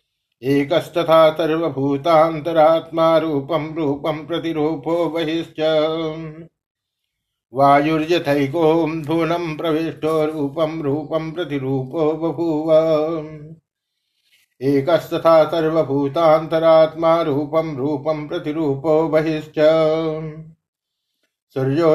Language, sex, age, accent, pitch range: Hindi, male, 60-79, native, 155-160 Hz